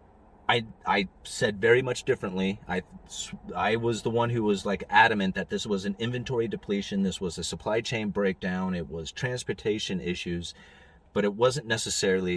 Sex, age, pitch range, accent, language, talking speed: male, 30-49, 90-120 Hz, American, English, 170 wpm